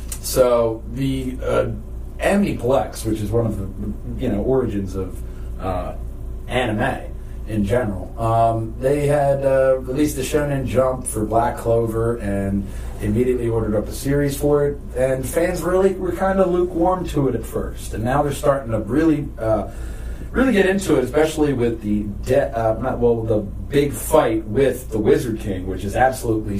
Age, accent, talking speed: 40-59, American, 170 wpm